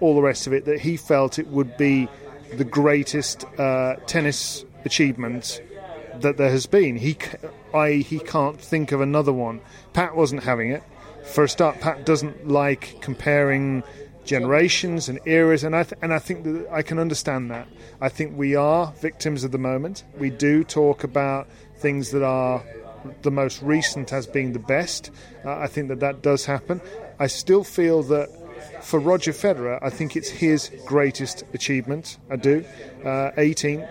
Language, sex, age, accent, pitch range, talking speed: English, male, 40-59, British, 135-155 Hz, 175 wpm